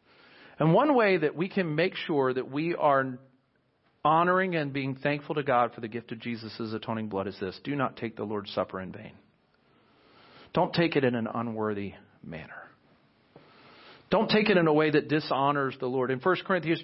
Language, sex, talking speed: English, male, 190 wpm